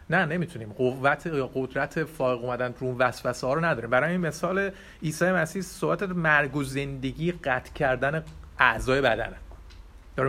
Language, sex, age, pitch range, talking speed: Persian, male, 30-49, 130-170 Hz, 155 wpm